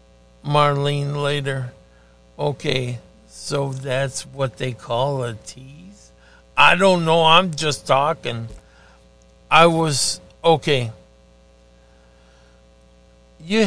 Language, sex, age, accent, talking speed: English, male, 60-79, American, 90 wpm